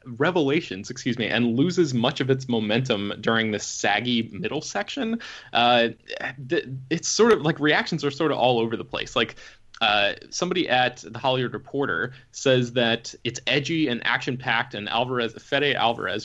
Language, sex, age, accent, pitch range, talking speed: English, male, 20-39, American, 115-140 Hz, 165 wpm